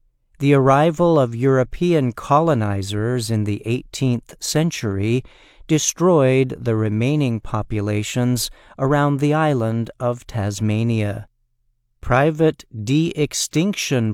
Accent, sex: American, male